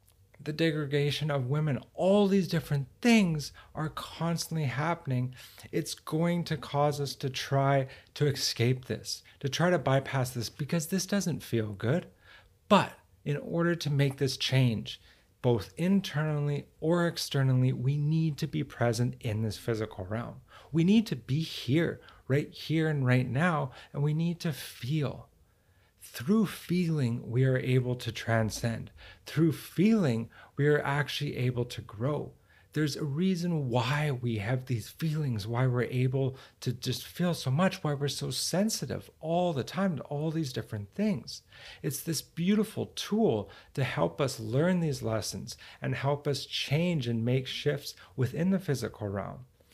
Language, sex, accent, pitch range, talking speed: English, male, American, 120-155 Hz, 155 wpm